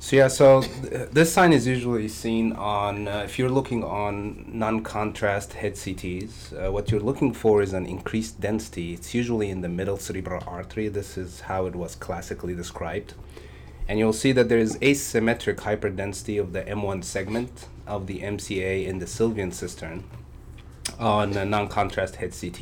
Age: 30-49